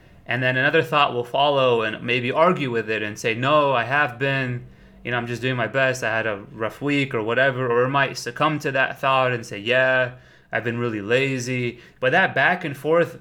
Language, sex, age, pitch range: English, male, 20-39, 120-155 Hz